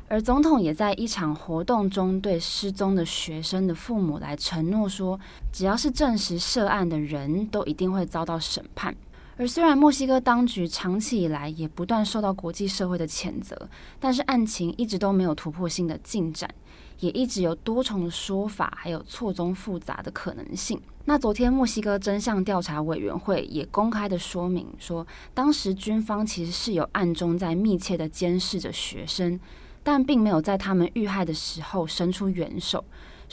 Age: 20-39